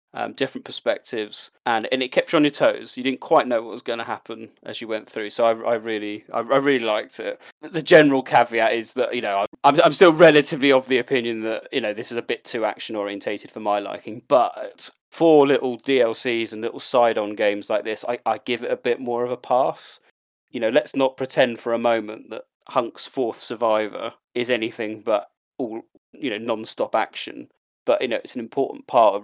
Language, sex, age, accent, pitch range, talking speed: English, male, 20-39, British, 110-130 Hz, 220 wpm